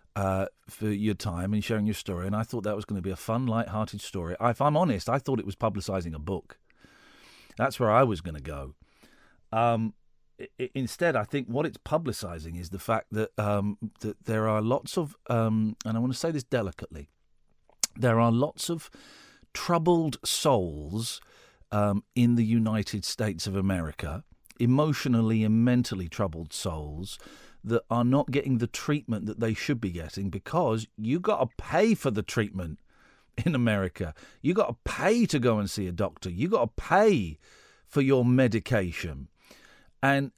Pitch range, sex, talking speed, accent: 100-145 Hz, male, 180 wpm, British